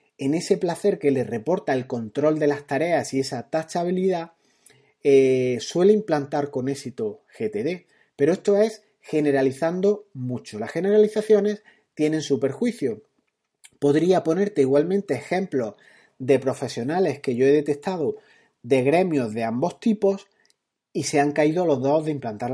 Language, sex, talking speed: Spanish, male, 140 wpm